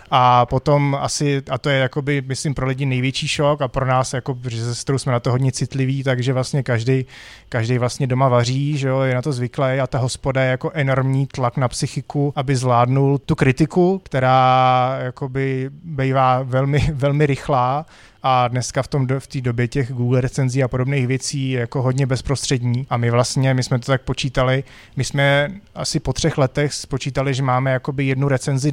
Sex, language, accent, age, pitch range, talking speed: male, Czech, native, 20-39, 125-140 Hz, 185 wpm